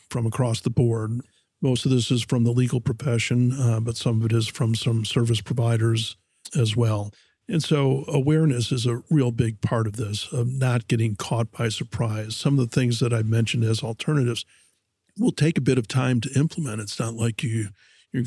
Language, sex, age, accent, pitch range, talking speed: English, male, 50-69, American, 115-130 Hz, 205 wpm